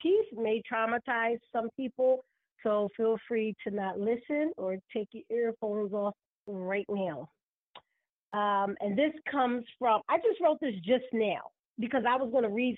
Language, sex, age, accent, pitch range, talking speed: English, female, 40-59, American, 220-300 Hz, 165 wpm